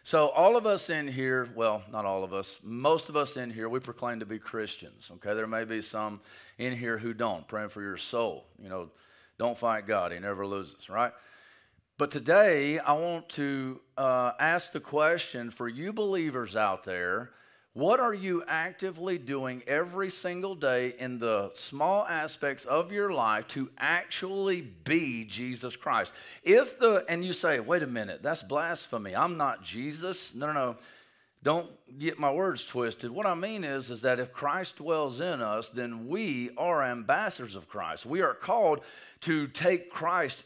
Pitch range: 120-170 Hz